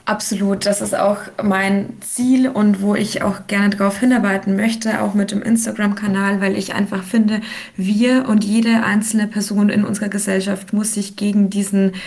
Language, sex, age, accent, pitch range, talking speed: German, female, 20-39, German, 190-210 Hz, 170 wpm